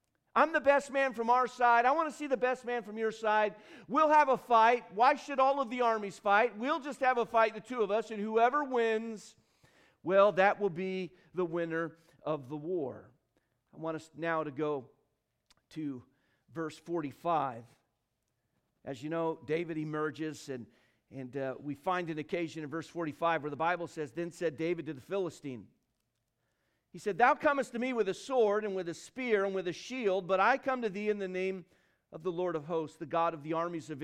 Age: 50-69